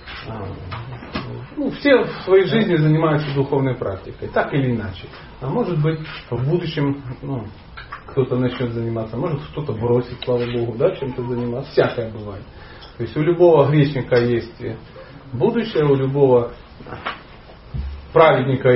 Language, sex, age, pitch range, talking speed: Russian, male, 40-59, 120-180 Hz, 130 wpm